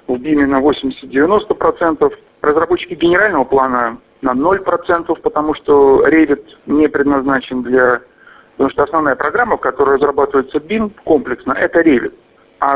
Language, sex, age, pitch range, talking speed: Russian, male, 50-69, 135-180 Hz, 125 wpm